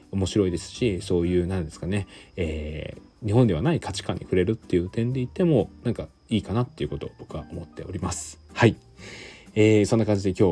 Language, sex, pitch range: Japanese, male, 80-100 Hz